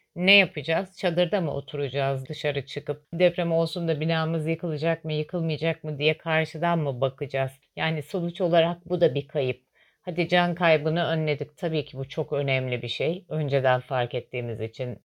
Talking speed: 165 wpm